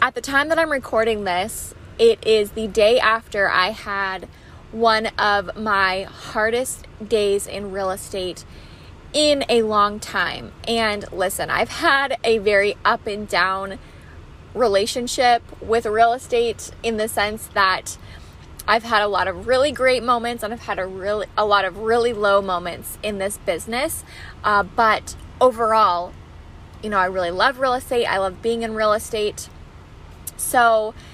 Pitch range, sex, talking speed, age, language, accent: 190-235 Hz, female, 160 wpm, 20-39, English, American